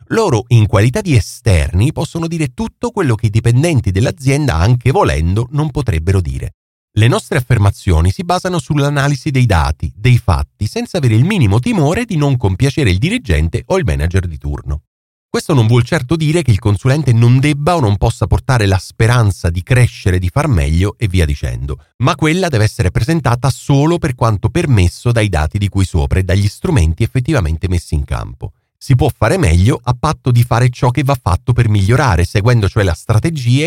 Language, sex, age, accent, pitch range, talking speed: Italian, male, 40-59, native, 95-140 Hz, 190 wpm